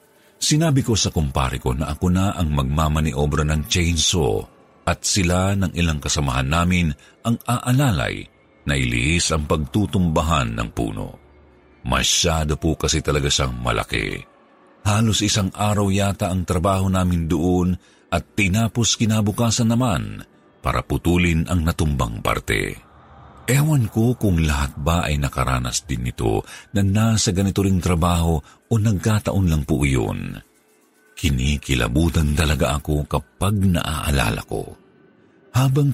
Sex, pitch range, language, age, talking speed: male, 75-105 Hz, Filipino, 50-69, 125 wpm